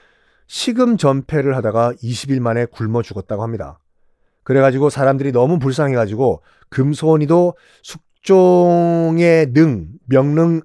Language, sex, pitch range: Korean, male, 125-175 Hz